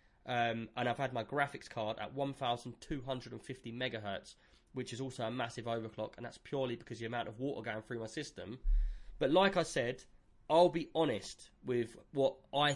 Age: 20-39